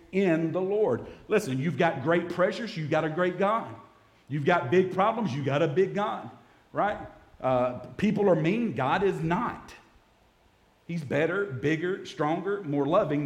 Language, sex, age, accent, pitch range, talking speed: English, male, 50-69, American, 125-170 Hz, 165 wpm